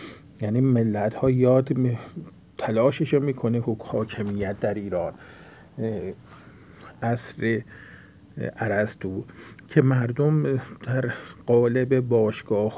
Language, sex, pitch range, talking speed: Persian, male, 110-130 Hz, 75 wpm